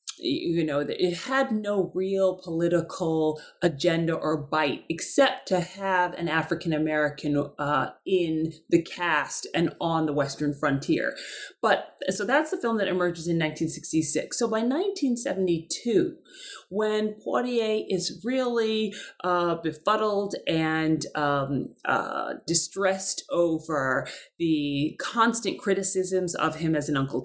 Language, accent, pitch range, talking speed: English, American, 155-200 Hz, 125 wpm